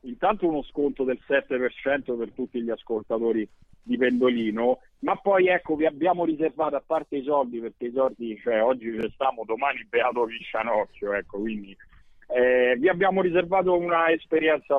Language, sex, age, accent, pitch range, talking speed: Italian, male, 50-69, native, 130-180 Hz, 155 wpm